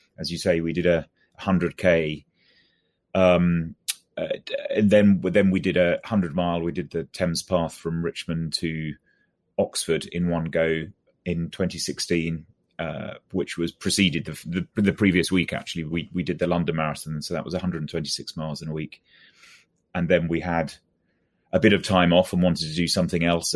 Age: 30-49